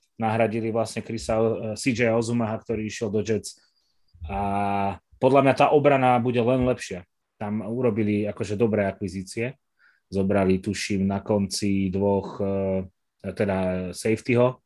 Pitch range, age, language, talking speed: 105-125 Hz, 20-39, Slovak, 120 wpm